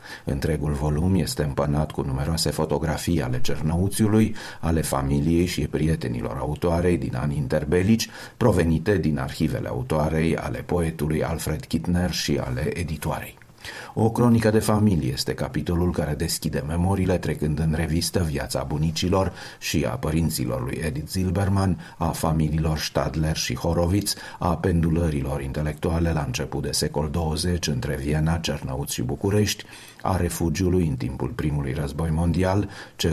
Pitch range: 75-85 Hz